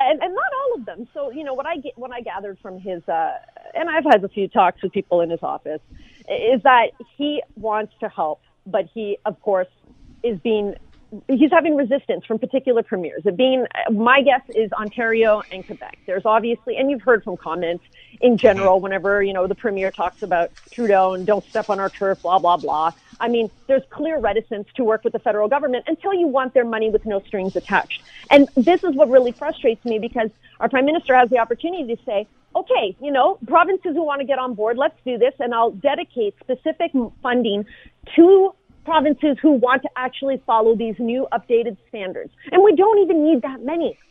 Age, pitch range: 40-59, 215-295 Hz